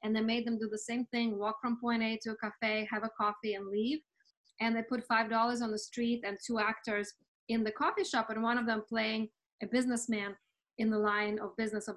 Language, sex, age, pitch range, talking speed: English, female, 20-39, 220-265 Hz, 235 wpm